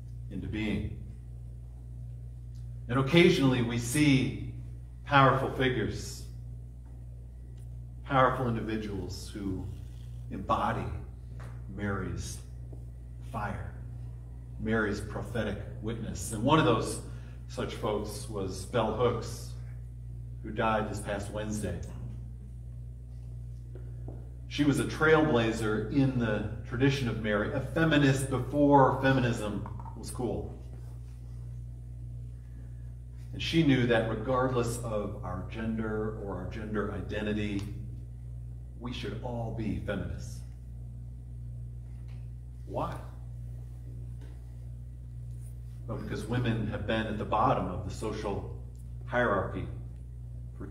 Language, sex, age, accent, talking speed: English, male, 40-59, American, 90 wpm